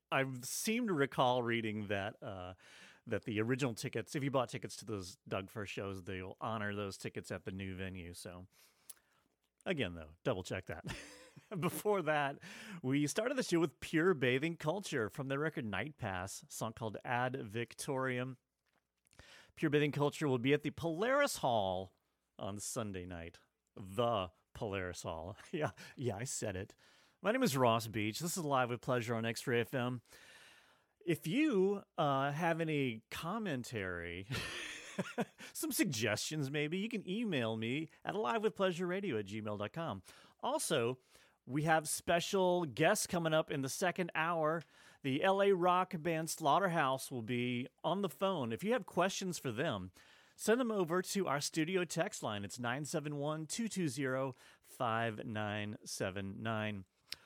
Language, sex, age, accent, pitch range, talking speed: English, male, 30-49, American, 110-165 Hz, 150 wpm